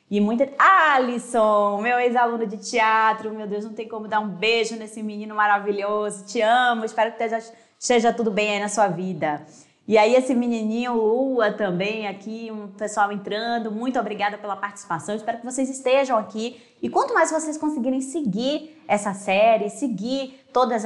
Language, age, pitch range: Portuguese, 20-39, 190-240 Hz